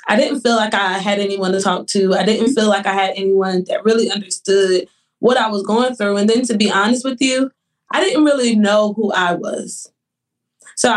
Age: 20-39